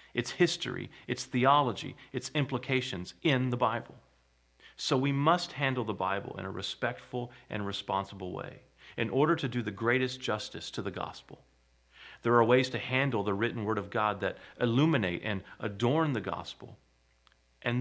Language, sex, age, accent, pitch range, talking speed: English, male, 40-59, American, 95-130 Hz, 160 wpm